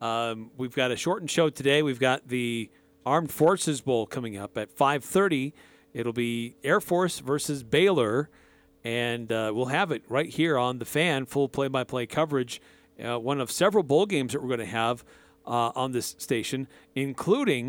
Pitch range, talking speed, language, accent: 120-155 Hz, 175 wpm, English, American